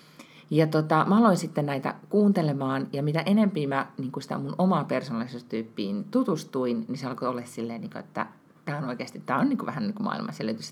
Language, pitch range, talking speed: Finnish, 130-175 Hz, 175 wpm